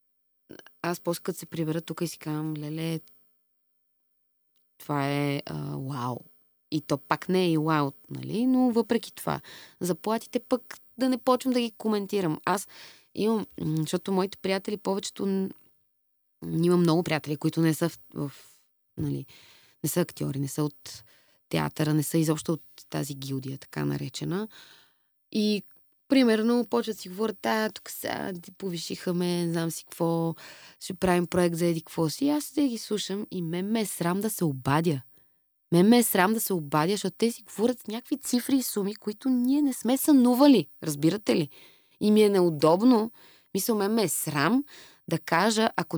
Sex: female